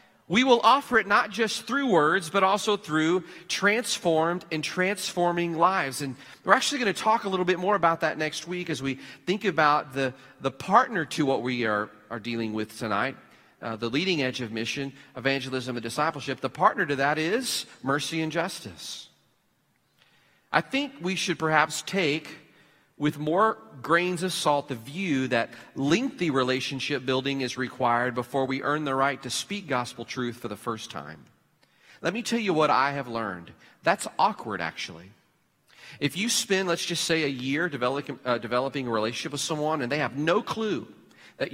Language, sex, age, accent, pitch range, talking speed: English, male, 40-59, American, 130-180 Hz, 180 wpm